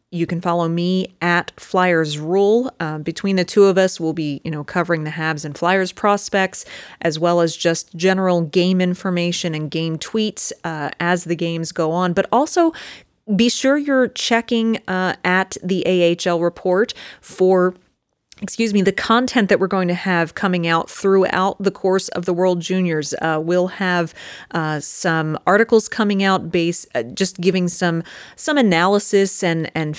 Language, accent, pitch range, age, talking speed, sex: English, American, 165-190 Hz, 30-49, 170 wpm, female